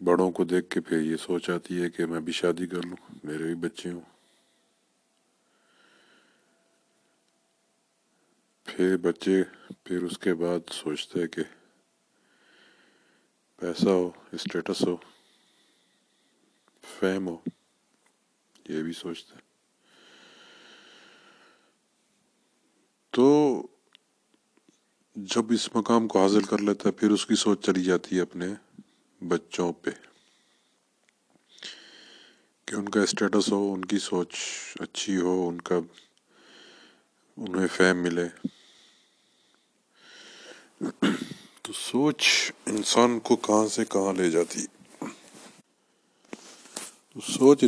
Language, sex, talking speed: Urdu, male, 100 wpm